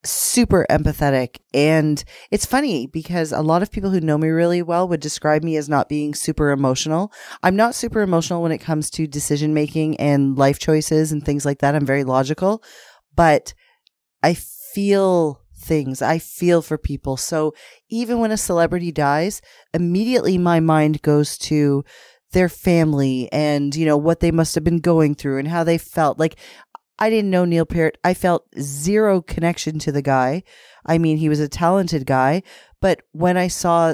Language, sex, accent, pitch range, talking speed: English, female, American, 150-180 Hz, 180 wpm